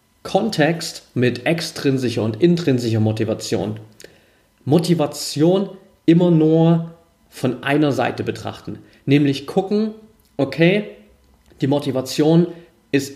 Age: 30-49